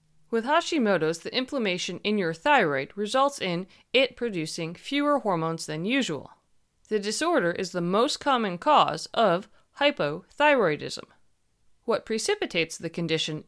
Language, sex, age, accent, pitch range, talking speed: English, female, 30-49, American, 165-255 Hz, 125 wpm